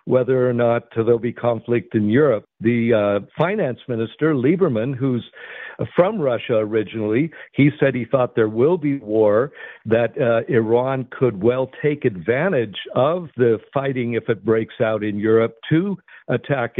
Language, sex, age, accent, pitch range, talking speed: English, male, 60-79, American, 110-125 Hz, 155 wpm